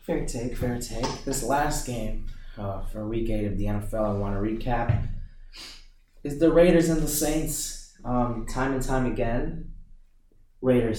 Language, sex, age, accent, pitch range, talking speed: English, male, 20-39, American, 95-115 Hz, 165 wpm